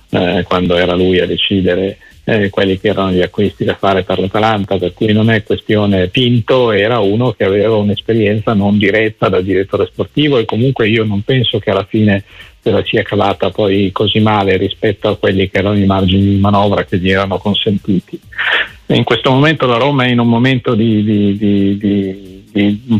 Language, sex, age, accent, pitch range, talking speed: Italian, male, 50-69, native, 100-120 Hz, 190 wpm